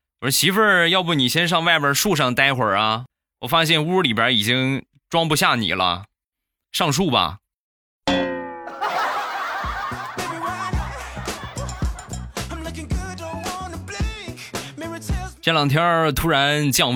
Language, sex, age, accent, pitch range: Chinese, male, 20-39, native, 100-160 Hz